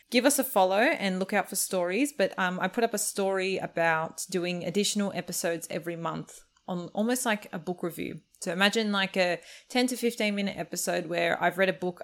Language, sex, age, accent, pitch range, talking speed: English, female, 20-39, Australian, 170-205 Hz, 210 wpm